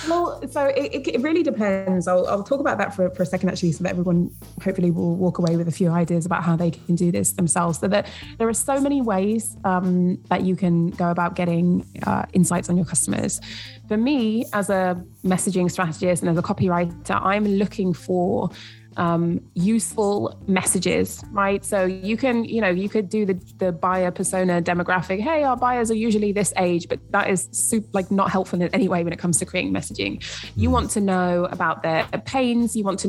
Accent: British